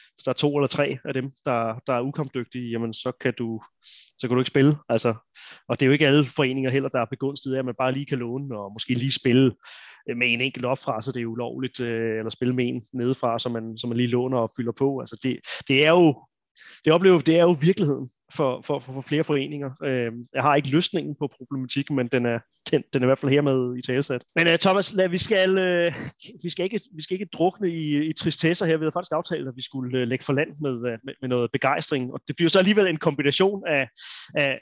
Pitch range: 125-155 Hz